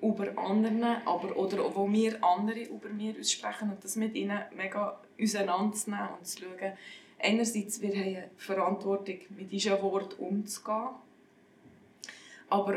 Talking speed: 140 wpm